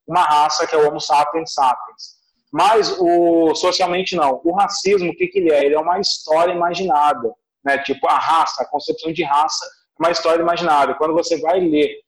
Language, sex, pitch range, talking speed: Portuguese, male, 150-185 Hz, 200 wpm